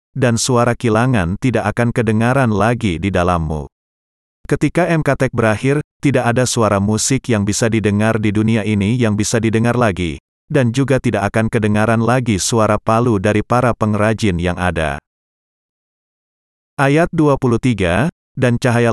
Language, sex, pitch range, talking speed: Indonesian, male, 100-125 Hz, 135 wpm